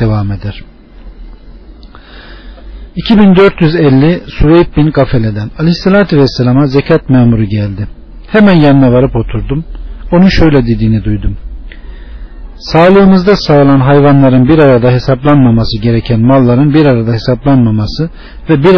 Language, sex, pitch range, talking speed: Turkish, male, 120-155 Hz, 100 wpm